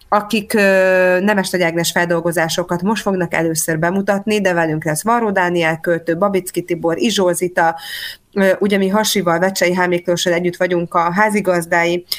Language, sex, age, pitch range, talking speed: Hungarian, female, 30-49, 175-210 Hz, 130 wpm